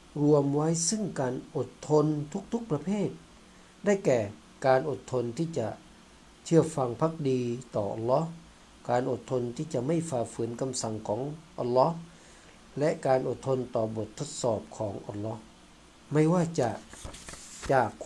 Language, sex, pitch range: Thai, male, 120-155 Hz